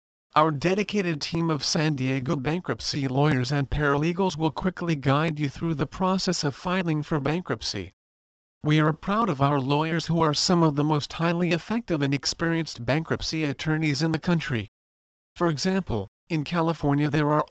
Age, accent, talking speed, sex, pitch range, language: 40-59, American, 165 wpm, male, 135-165 Hz, English